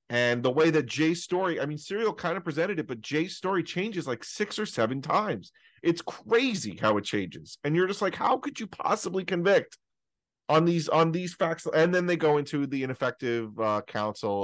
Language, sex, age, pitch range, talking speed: English, male, 30-49, 110-150 Hz, 210 wpm